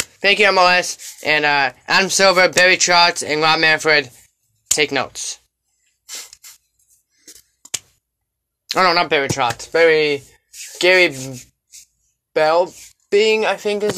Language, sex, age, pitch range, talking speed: English, male, 10-29, 145-185 Hz, 110 wpm